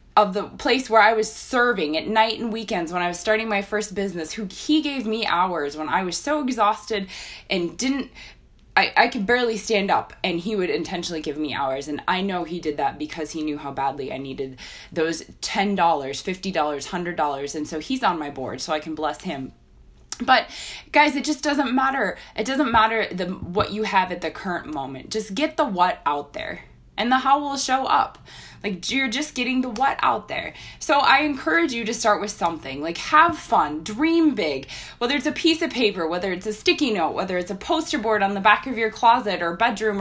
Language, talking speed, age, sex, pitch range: English, 215 wpm, 20-39, female, 170-260 Hz